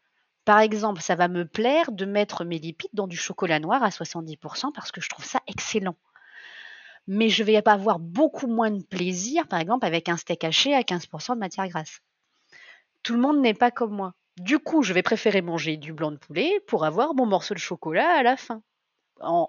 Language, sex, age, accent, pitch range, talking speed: French, female, 30-49, French, 175-235 Hz, 215 wpm